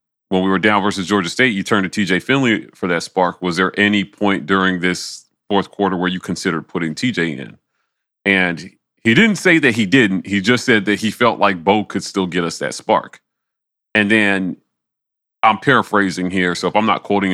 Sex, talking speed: male, 210 wpm